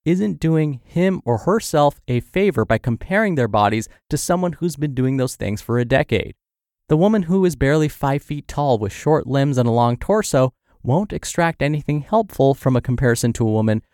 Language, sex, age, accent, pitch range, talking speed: English, male, 20-39, American, 110-160 Hz, 200 wpm